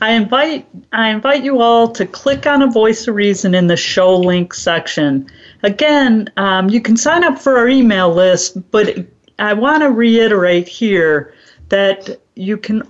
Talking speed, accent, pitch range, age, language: 170 wpm, American, 185-235 Hz, 50-69, English